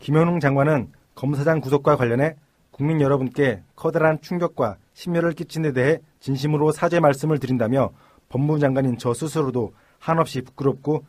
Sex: male